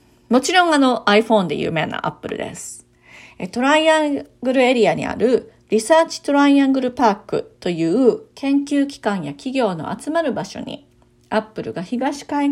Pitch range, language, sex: 205-275 Hz, Japanese, female